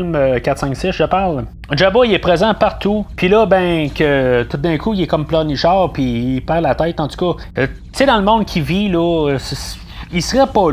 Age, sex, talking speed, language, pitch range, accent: 30-49, male, 235 wpm, French, 135-180 Hz, Canadian